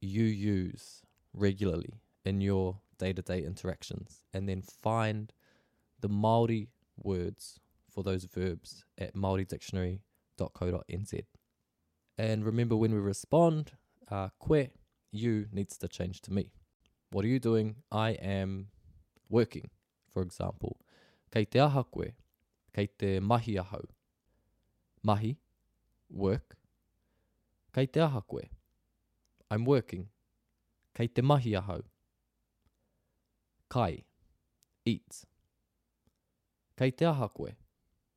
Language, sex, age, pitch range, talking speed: English, male, 20-39, 95-115 Hz, 90 wpm